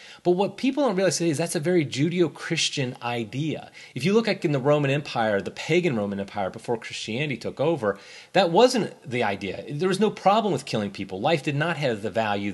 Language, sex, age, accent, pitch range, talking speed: English, male, 30-49, American, 110-155 Hz, 210 wpm